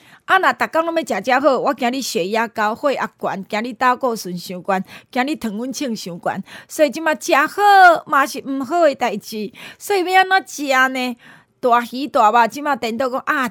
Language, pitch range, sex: Chinese, 215-295 Hz, female